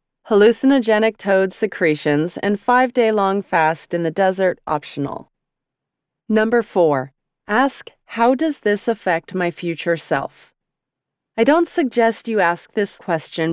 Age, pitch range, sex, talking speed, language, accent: 30-49, 170-235 Hz, female, 120 wpm, English, American